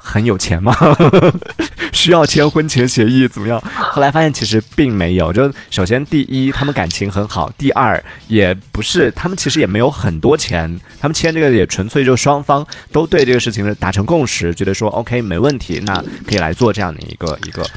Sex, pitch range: male, 95-135 Hz